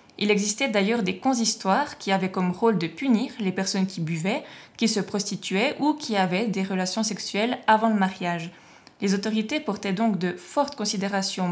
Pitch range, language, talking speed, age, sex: 185-225 Hz, French, 175 wpm, 20-39, female